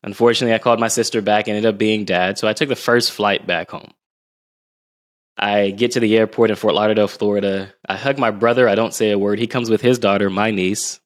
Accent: American